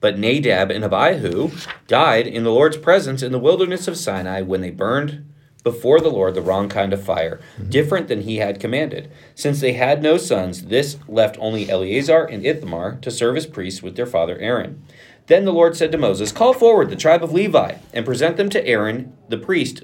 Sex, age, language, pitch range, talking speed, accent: male, 40-59, English, 100-150 Hz, 205 wpm, American